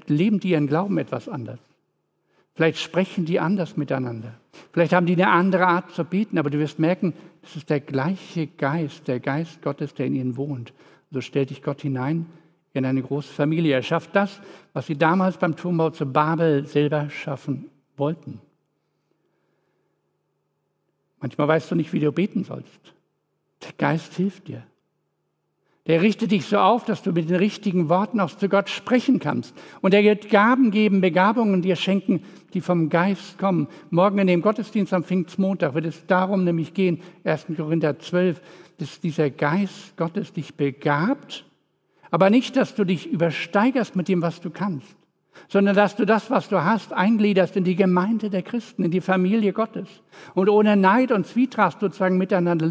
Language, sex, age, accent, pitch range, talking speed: German, male, 60-79, German, 155-195 Hz, 175 wpm